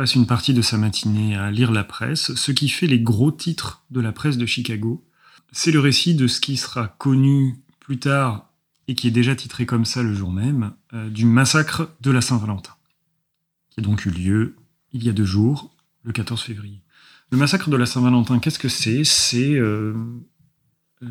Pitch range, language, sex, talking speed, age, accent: 115-135 Hz, French, male, 200 wpm, 30-49, French